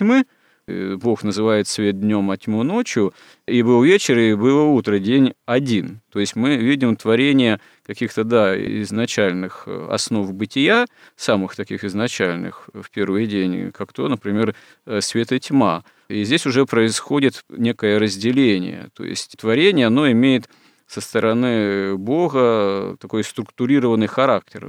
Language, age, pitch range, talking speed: Russian, 40-59, 105-135 Hz, 130 wpm